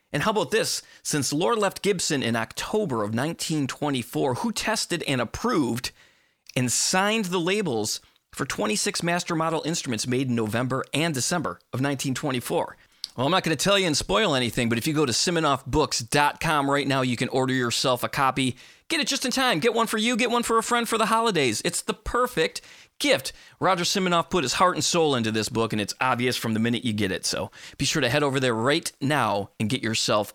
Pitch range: 120-175 Hz